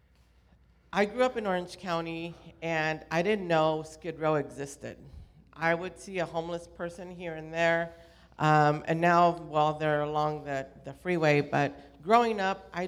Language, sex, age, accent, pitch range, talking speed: English, female, 50-69, American, 155-175 Hz, 170 wpm